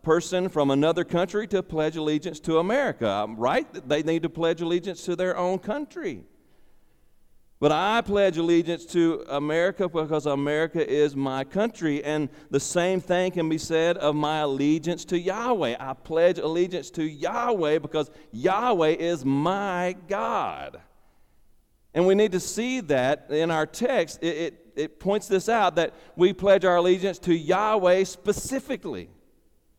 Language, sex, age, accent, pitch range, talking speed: English, male, 40-59, American, 140-180 Hz, 150 wpm